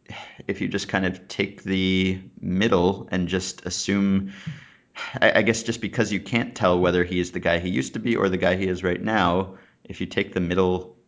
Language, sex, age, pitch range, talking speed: English, male, 30-49, 85-100 Hz, 210 wpm